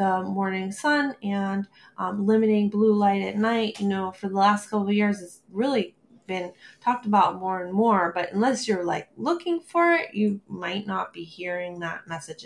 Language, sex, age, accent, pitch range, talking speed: English, female, 20-39, American, 180-220 Hz, 195 wpm